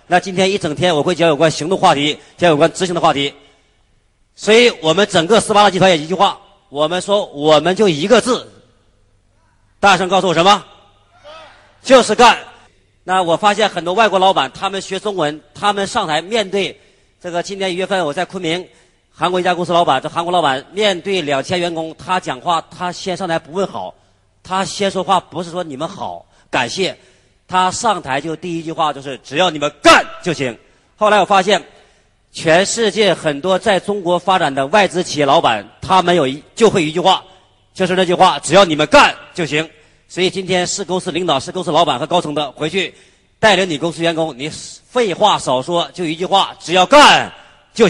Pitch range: 150-190 Hz